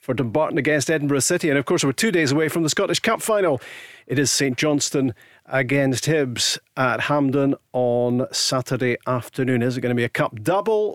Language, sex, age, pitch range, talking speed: English, male, 50-69, 125-165 Hz, 195 wpm